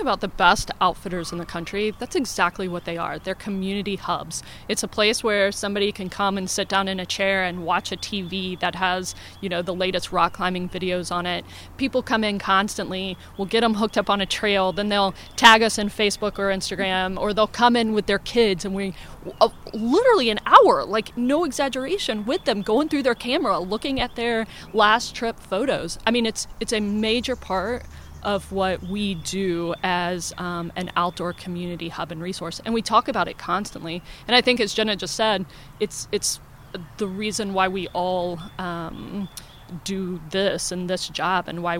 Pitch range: 180-210 Hz